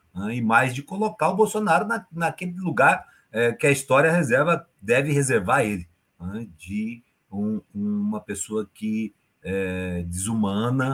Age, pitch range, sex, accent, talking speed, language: 50-69, 95-135 Hz, male, Brazilian, 115 wpm, Portuguese